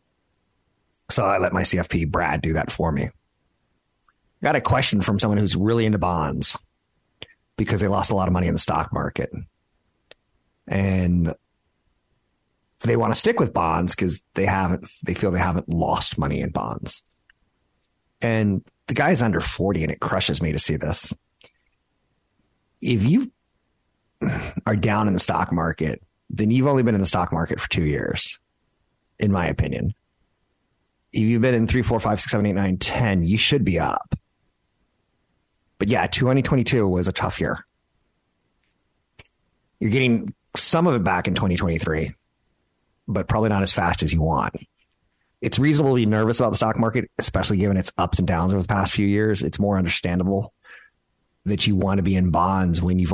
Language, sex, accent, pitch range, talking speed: English, male, American, 90-110 Hz, 165 wpm